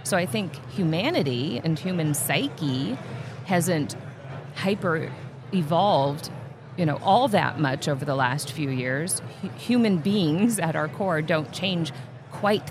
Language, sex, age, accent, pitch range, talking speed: English, female, 40-59, American, 145-185 Hz, 130 wpm